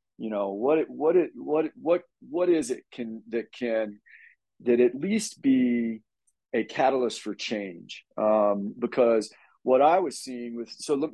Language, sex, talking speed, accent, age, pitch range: English, male, 165 wpm, American, 40-59, 100-125 Hz